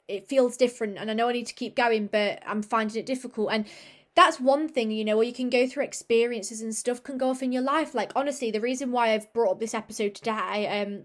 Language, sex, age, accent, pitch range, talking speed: English, female, 20-39, British, 220-260 Hz, 260 wpm